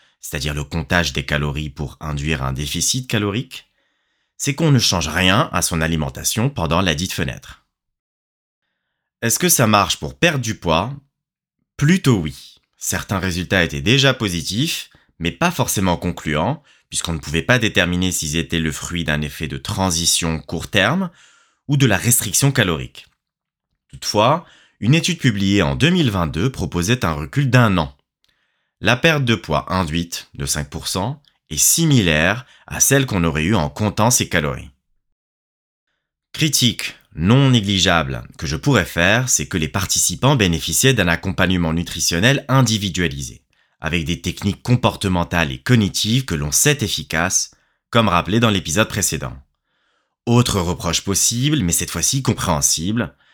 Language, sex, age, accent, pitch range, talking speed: French, male, 30-49, French, 80-120 Hz, 145 wpm